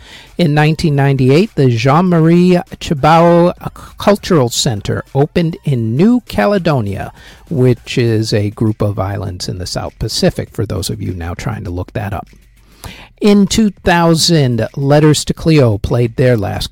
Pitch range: 115-165 Hz